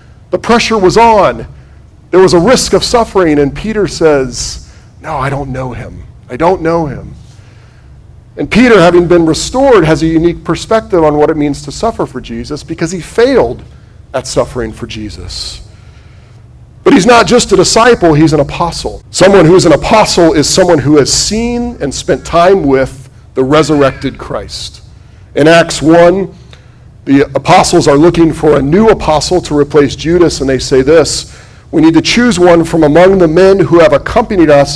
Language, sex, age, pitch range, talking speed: English, male, 40-59, 135-175 Hz, 180 wpm